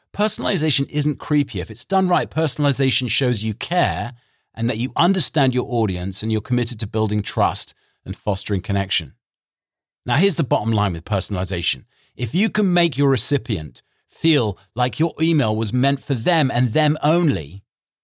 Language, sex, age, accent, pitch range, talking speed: English, male, 40-59, British, 105-150 Hz, 165 wpm